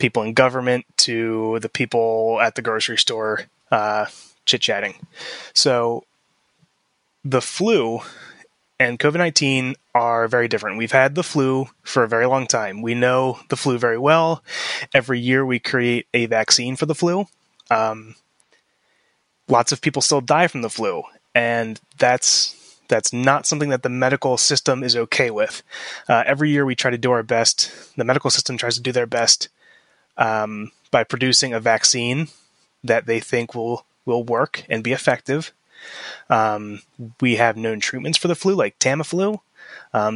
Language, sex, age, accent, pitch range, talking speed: English, male, 20-39, American, 115-135 Hz, 160 wpm